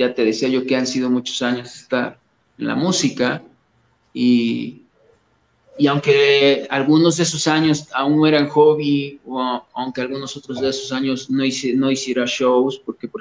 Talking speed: 170 wpm